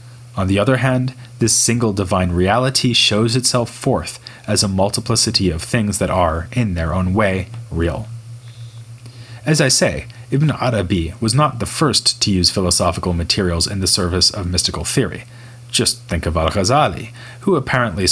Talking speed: 160 wpm